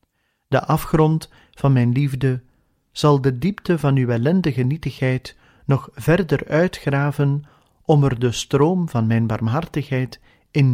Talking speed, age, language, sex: 130 wpm, 40-59, Dutch, male